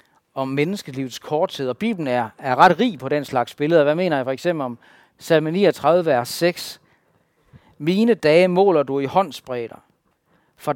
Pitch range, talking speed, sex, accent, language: 130-175 Hz, 175 wpm, male, native, Danish